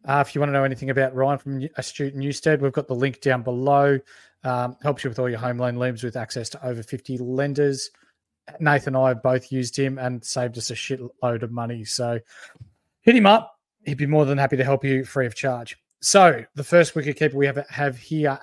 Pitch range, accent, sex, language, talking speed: 130-150 Hz, Australian, male, English, 230 wpm